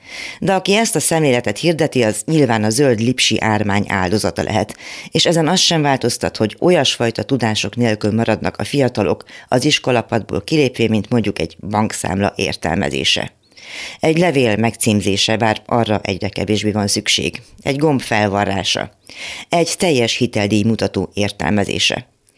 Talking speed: 135 wpm